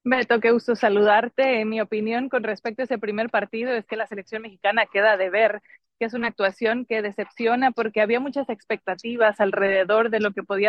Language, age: Spanish, 30-49